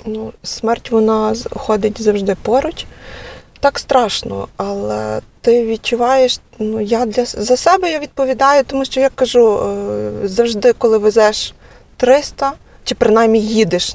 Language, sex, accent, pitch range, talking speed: Ukrainian, female, native, 205-240 Hz, 125 wpm